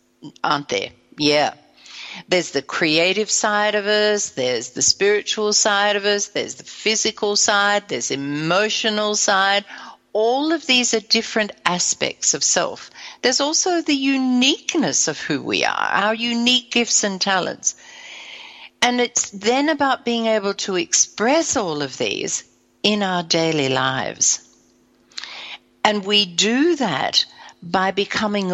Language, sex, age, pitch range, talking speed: English, female, 60-79, 180-245 Hz, 135 wpm